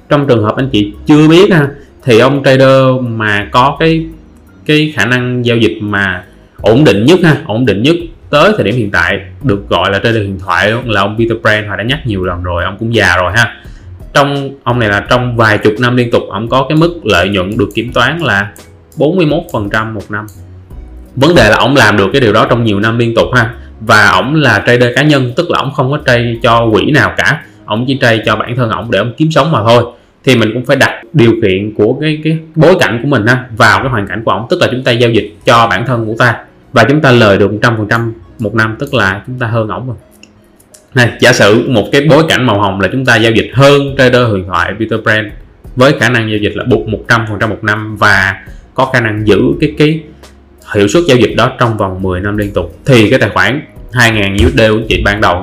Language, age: Vietnamese, 20-39